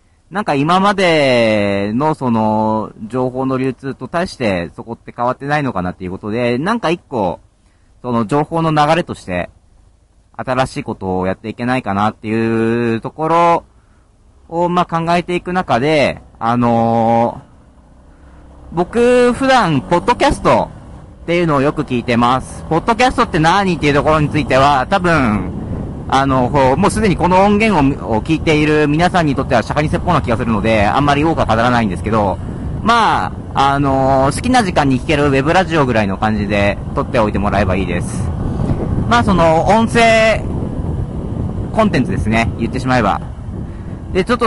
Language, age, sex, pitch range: Japanese, 40-59, male, 110-175 Hz